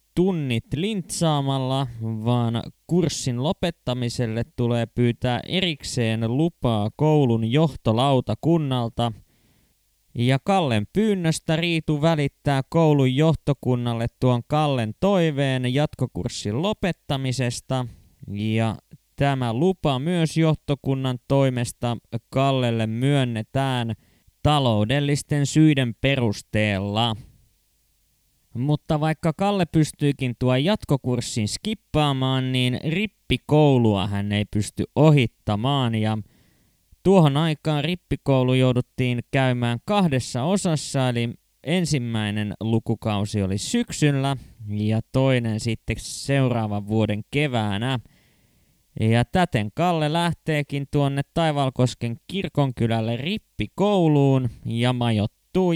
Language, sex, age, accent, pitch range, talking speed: Finnish, male, 20-39, native, 115-150 Hz, 80 wpm